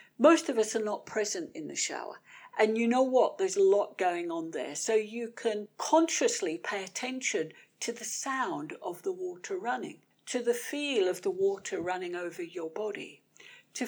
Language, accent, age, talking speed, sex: English, British, 60-79, 185 wpm, female